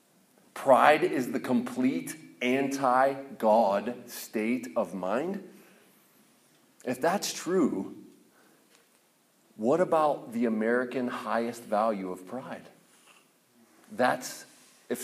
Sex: male